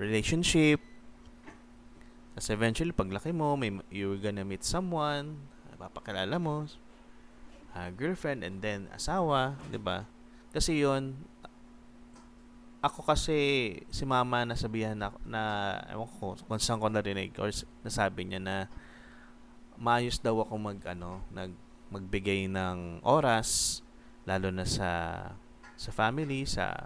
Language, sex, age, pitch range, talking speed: Filipino, male, 20-39, 100-125 Hz, 120 wpm